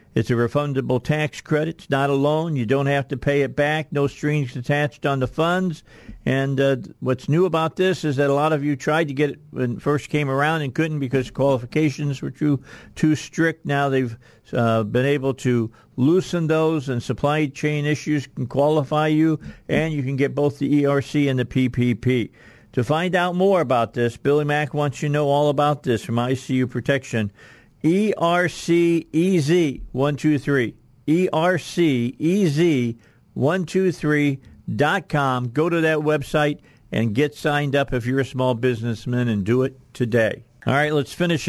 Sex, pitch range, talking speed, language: male, 125-150 Hz, 190 wpm, English